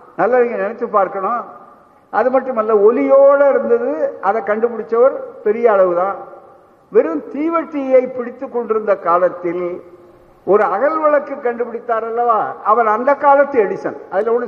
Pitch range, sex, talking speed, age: 190-275 Hz, male, 65 wpm, 60-79